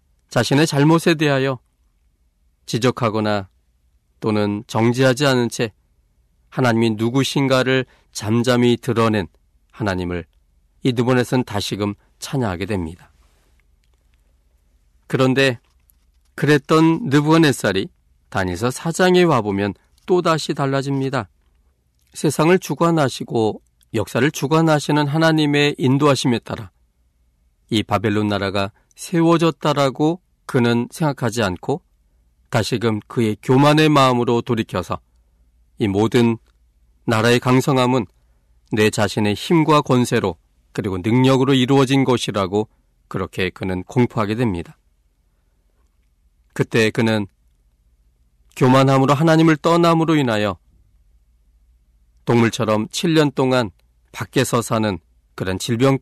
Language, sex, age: Korean, male, 40-59